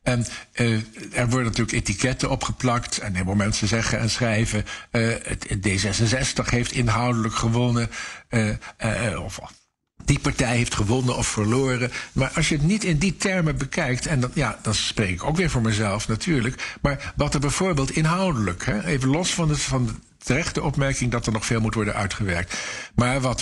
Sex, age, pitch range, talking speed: male, 60-79, 105-135 Hz, 185 wpm